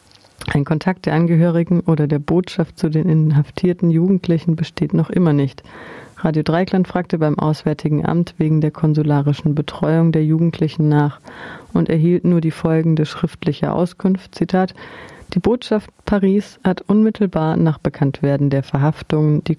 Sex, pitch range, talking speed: female, 150-175 Hz, 140 wpm